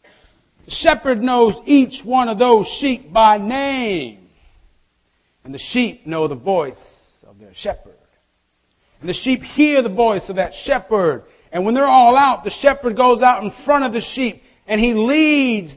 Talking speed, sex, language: 170 wpm, male, English